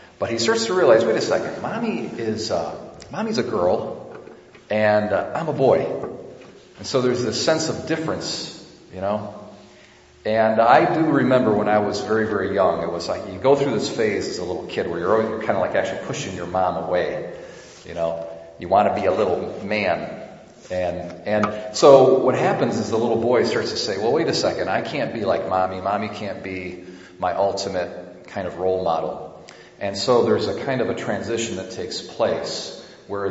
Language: English